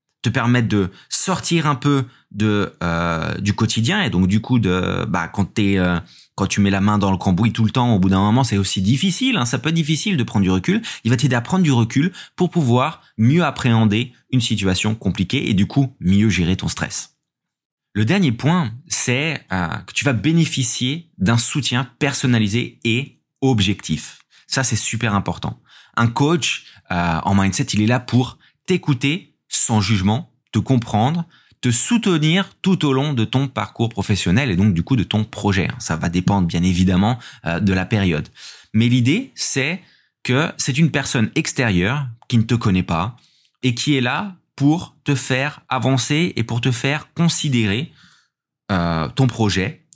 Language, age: Portuguese, 20-39